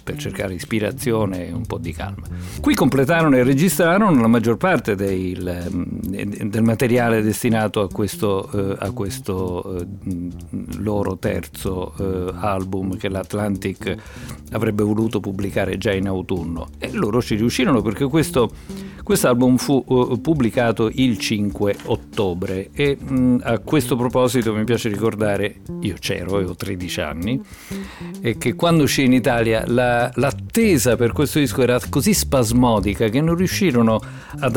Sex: male